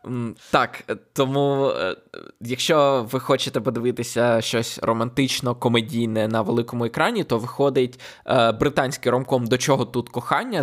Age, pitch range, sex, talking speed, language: 20-39, 115-130 Hz, male, 105 wpm, Ukrainian